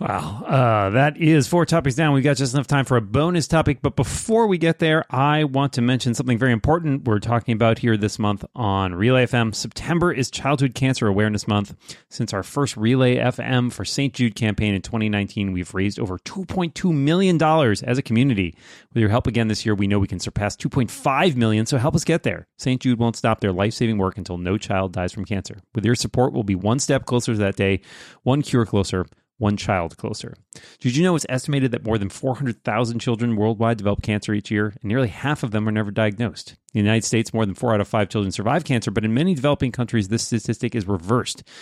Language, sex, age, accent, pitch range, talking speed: English, male, 30-49, American, 100-130 Hz, 225 wpm